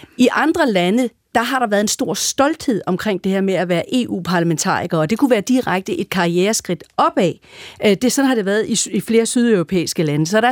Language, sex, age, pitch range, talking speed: Danish, female, 40-59, 190-250 Hz, 210 wpm